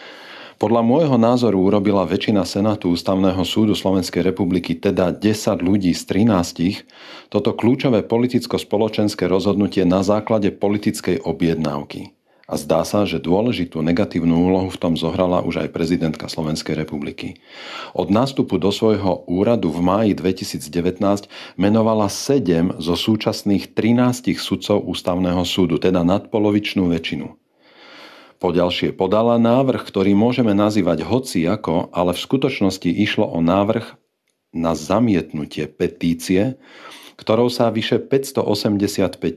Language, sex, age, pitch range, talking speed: Slovak, male, 40-59, 90-110 Hz, 120 wpm